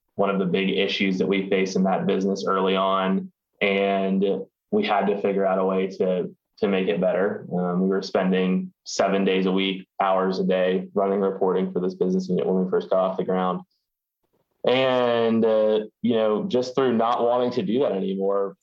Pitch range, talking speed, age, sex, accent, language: 95-105 Hz, 200 wpm, 20-39, male, American, English